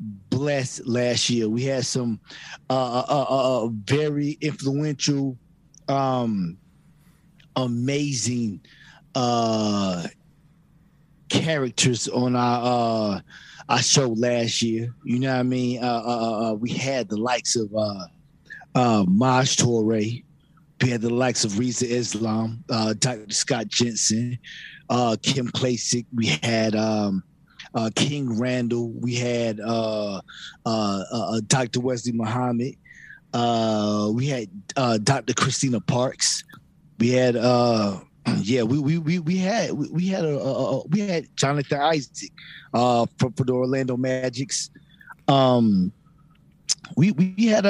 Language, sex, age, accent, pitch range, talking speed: English, male, 30-49, American, 115-150 Hz, 130 wpm